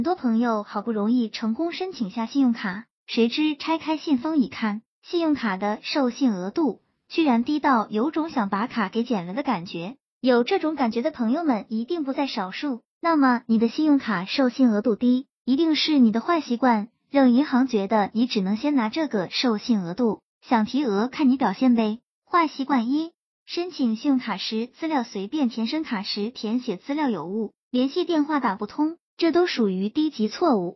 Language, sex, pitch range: Chinese, male, 220-285 Hz